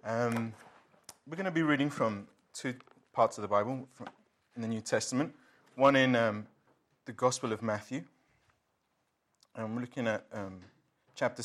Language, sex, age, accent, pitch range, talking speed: English, male, 30-49, British, 110-135 Hz, 150 wpm